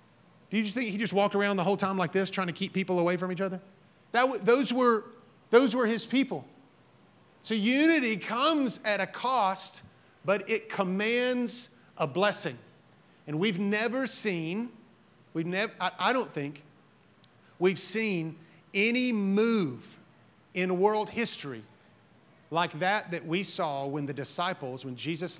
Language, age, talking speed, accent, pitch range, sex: English, 40-59, 155 wpm, American, 155-205 Hz, male